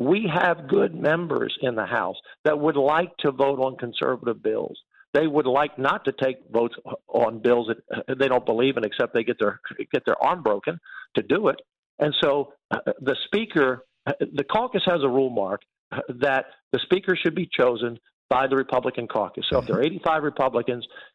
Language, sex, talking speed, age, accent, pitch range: English, male, 190 wpm, 50-69, American, 135-175 Hz